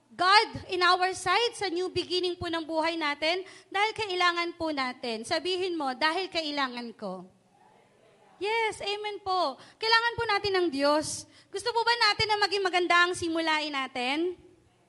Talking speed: 155 wpm